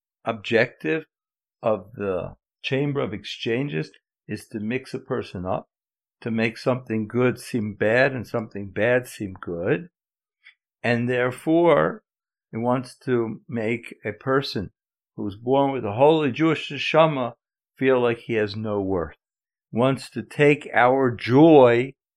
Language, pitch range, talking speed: English, 110-140 Hz, 135 wpm